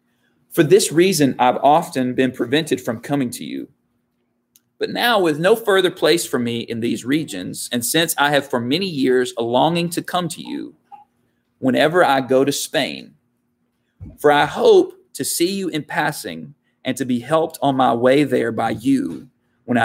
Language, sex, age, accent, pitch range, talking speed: English, male, 30-49, American, 125-170 Hz, 180 wpm